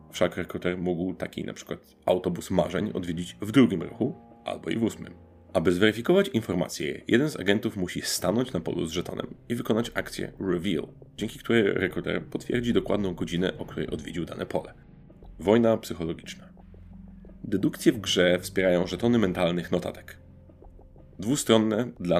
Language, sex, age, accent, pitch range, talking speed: Polish, male, 30-49, native, 90-115 Hz, 145 wpm